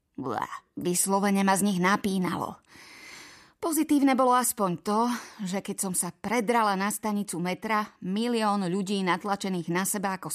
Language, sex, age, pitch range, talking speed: Slovak, female, 30-49, 185-240 Hz, 135 wpm